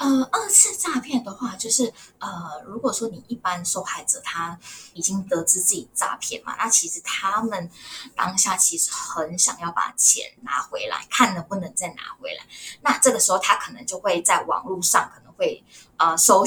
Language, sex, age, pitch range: Chinese, female, 10-29, 180-250 Hz